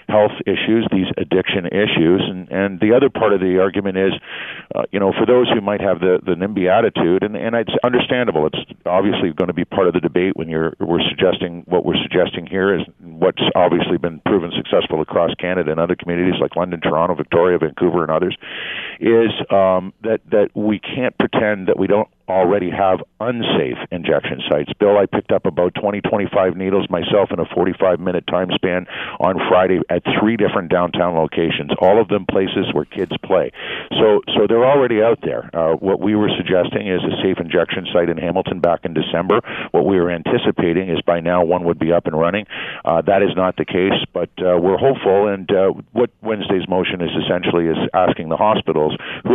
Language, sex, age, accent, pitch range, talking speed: English, male, 50-69, American, 90-100 Hz, 200 wpm